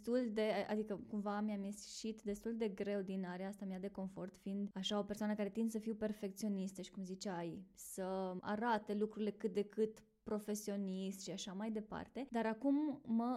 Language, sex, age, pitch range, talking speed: Romanian, female, 20-39, 200-230 Hz, 185 wpm